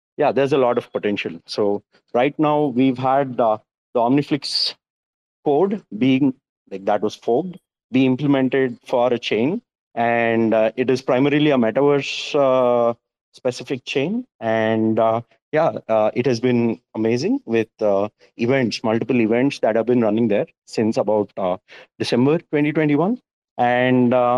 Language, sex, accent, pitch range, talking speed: English, male, Indian, 120-145 Hz, 145 wpm